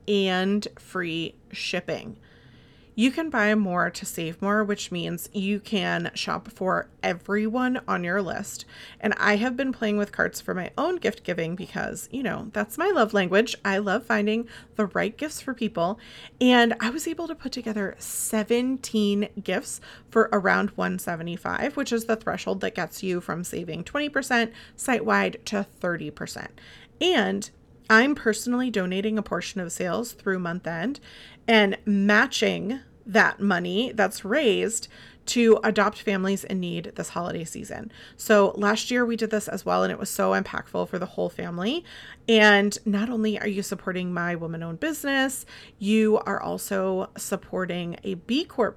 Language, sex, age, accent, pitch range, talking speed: English, female, 30-49, American, 195-235 Hz, 160 wpm